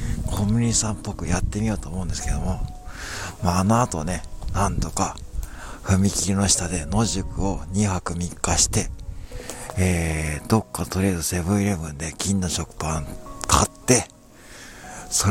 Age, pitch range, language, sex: 60-79, 85-105 Hz, Japanese, male